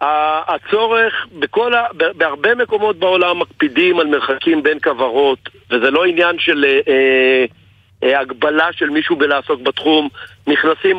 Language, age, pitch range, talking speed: Hebrew, 50-69, 135-190 Hz, 115 wpm